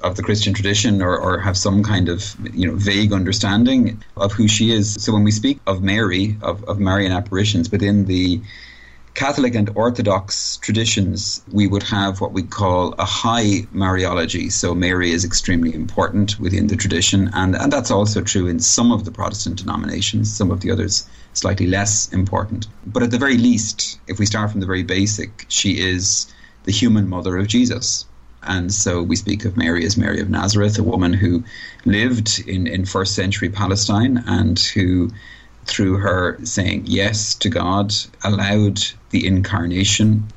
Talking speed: 175 wpm